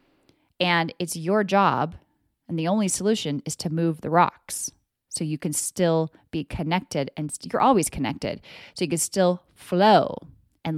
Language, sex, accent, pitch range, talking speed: English, female, American, 165-220 Hz, 165 wpm